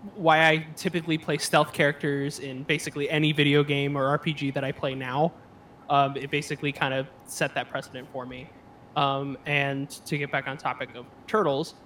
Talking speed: 180 wpm